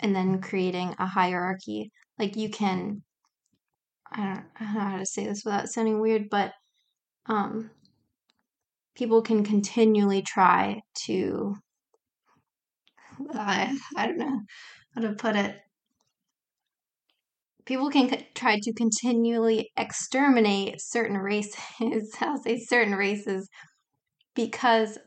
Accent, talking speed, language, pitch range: American, 110 wpm, English, 195-225 Hz